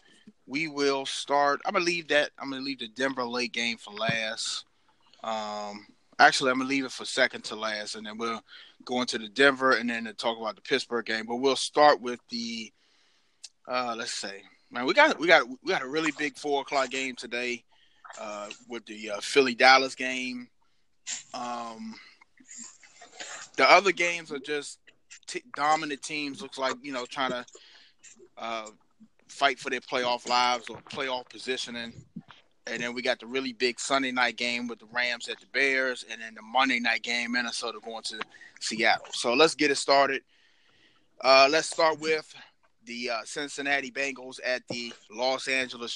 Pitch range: 120-145 Hz